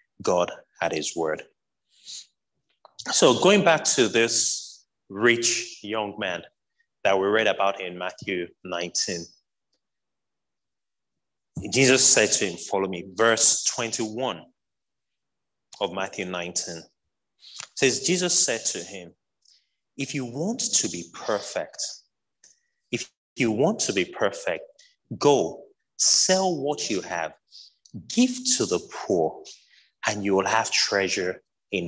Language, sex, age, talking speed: English, male, 30-49, 120 wpm